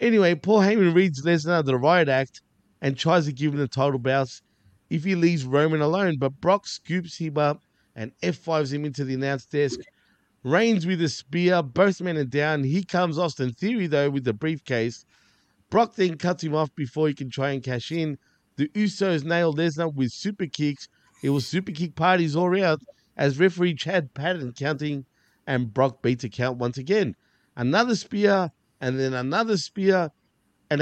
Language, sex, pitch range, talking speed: English, male, 135-175 Hz, 185 wpm